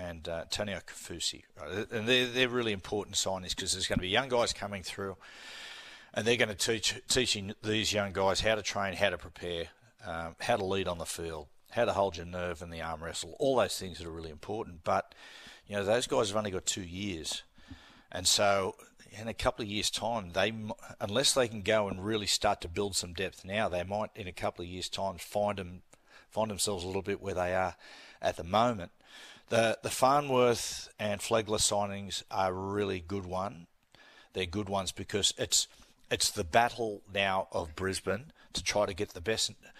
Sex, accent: male, Australian